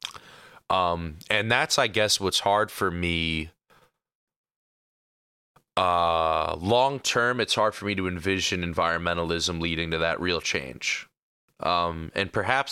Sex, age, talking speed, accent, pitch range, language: male, 20-39, 125 wpm, American, 80-100 Hz, English